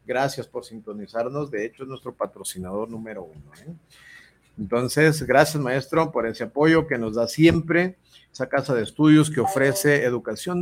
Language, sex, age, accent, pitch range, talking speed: Spanish, male, 50-69, Mexican, 115-155 Hz, 155 wpm